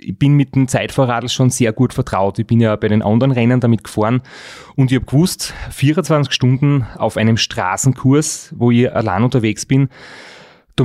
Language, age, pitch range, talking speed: German, 30-49, 115-135 Hz, 185 wpm